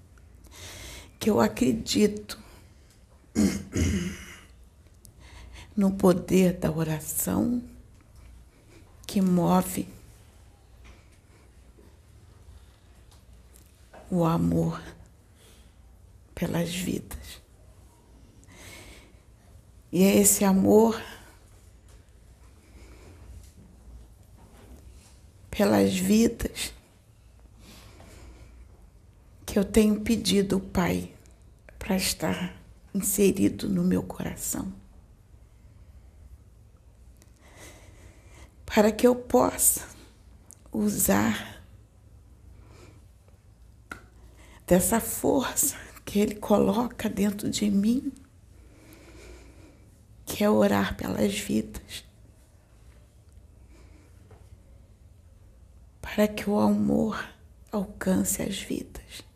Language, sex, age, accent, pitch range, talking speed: Portuguese, female, 60-79, Brazilian, 90-110 Hz, 55 wpm